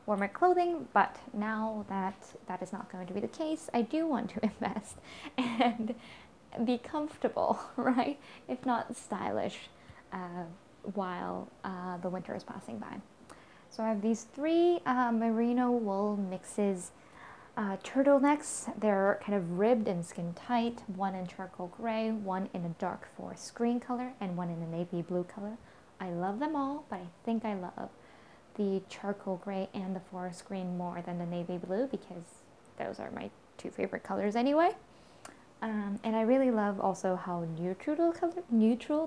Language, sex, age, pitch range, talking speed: English, female, 10-29, 185-250 Hz, 165 wpm